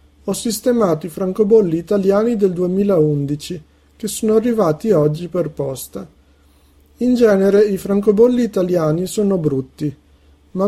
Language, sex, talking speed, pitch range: Italian, male, 120 wpm, 150-205 Hz